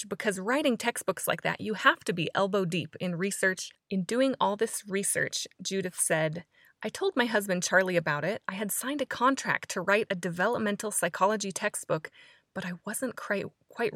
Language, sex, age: English, female, 20-39